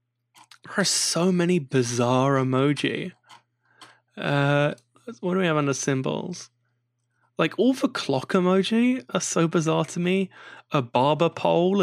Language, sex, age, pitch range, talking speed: English, male, 10-29, 130-165 Hz, 130 wpm